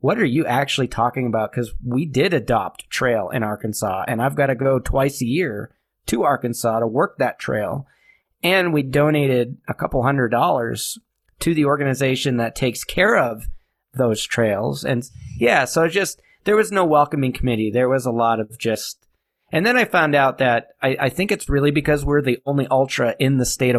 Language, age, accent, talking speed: English, 30-49, American, 195 wpm